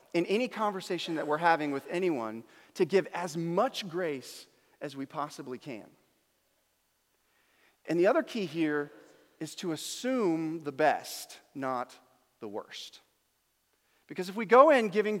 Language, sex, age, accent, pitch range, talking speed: English, male, 40-59, American, 150-220 Hz, 140 wpm